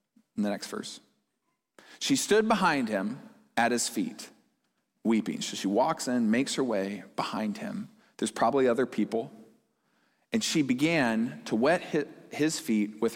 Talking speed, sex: 150 wpm, male